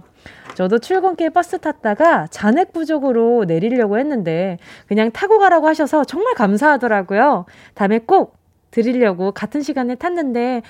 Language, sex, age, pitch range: Korean, female, 20-39, 205-320 Hz